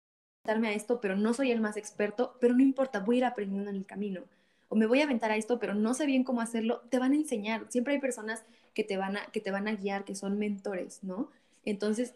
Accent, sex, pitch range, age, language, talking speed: Mexican, female, 200-245 Hz, 20-39, Spanish, 255 wpm